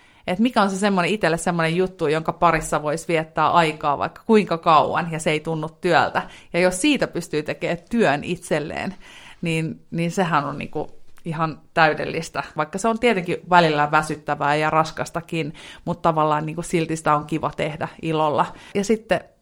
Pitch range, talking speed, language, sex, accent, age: 155-180 Hz, 165 wpm, Finnish, female, native, 30-49